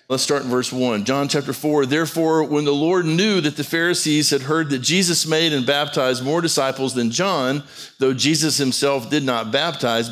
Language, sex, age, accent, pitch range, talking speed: English, male, 50-69, American, 125-150 Hz, 195 wpm